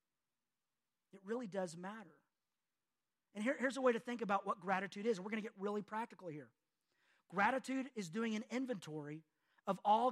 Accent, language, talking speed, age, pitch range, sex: American, English, 170 wpm, 40-59, 190-240 Hz, male